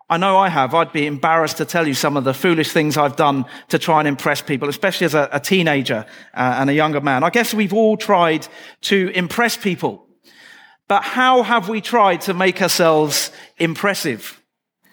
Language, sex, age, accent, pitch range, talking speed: English, male, 40-59, British, 150-215 Hz, 190 wpm